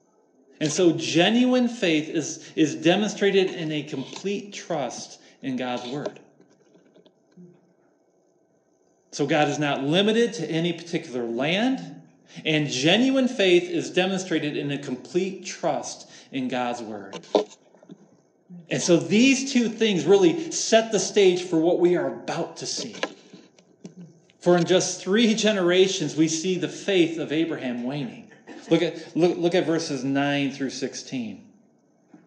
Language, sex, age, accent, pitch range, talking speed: English, male, 40-59, American, 145-195 Hz, 135 wpm